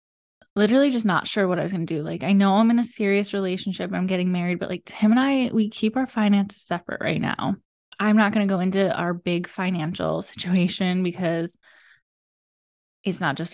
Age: 20-39